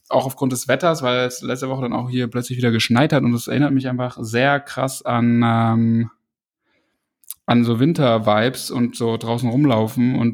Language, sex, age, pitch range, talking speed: German, male, 10-29, 115-130 Hz, 185 wpm